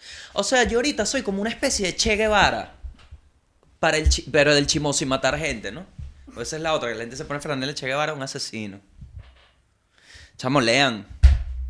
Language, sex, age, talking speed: Spanish, male, 20-39, 190 wpm